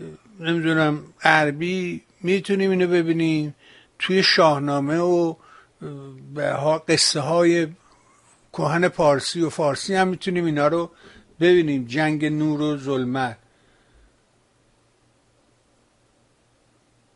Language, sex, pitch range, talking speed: Persian, male, 150-185 Hz, 85 wpm